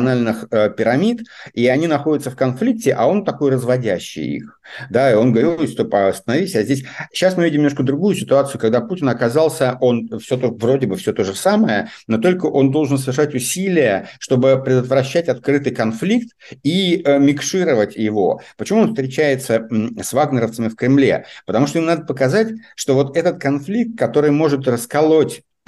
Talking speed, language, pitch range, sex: 160 wpm, Russian, 115-145 Hz, male